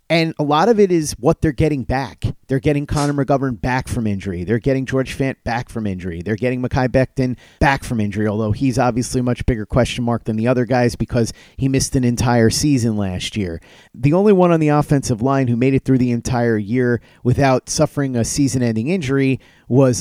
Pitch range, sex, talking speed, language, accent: 115-140 Hz, male, 215 wpm, English, American